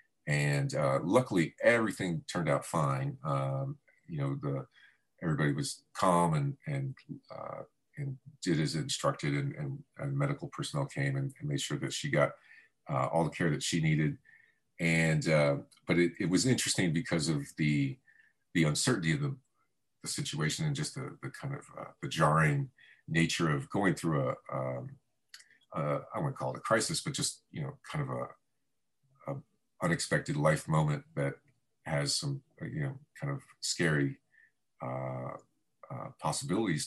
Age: 40-59